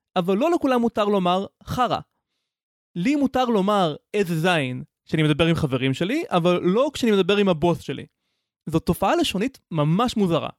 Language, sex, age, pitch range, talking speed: Hebrew, male, 20-39, 160-235 Hz, 160 wpm